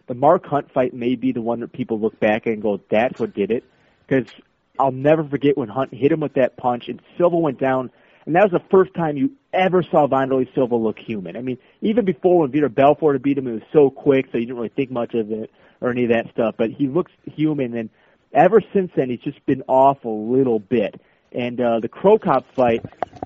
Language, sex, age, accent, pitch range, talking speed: English, male, 30-49, American, 125-160 Hz, 245 wpm